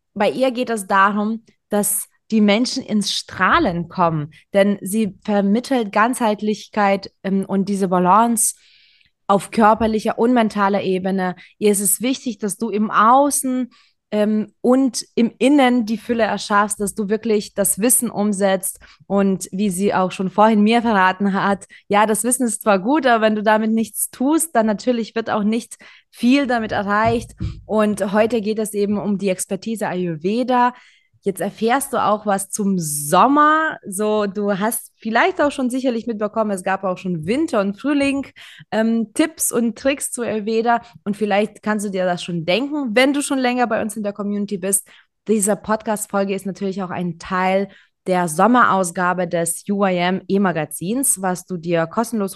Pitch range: 195-230 Hz